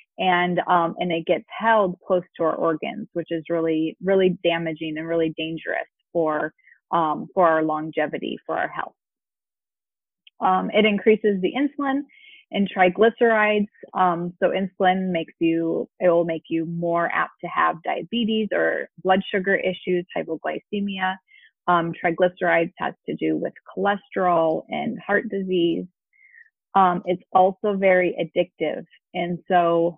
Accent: American